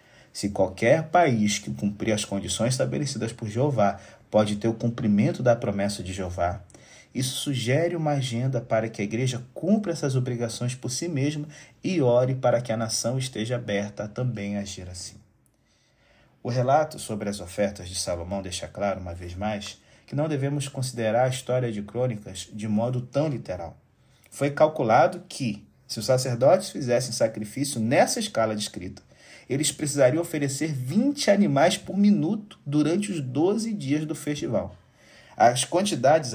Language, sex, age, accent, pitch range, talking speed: Portuguese, male, 30-49, Brazilian, 105-145 Hz, 155 wpm